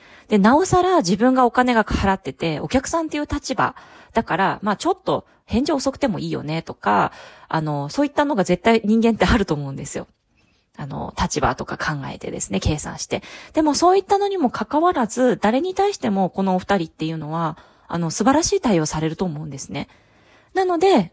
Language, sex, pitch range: Japanese, female, 165-260 Hz